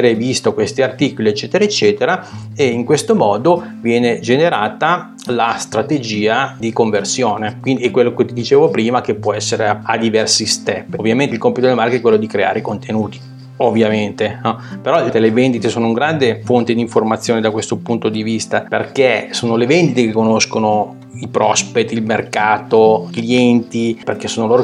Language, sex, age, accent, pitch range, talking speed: Italian, male, 30-49, native, 110-125 Hz, 170 wpm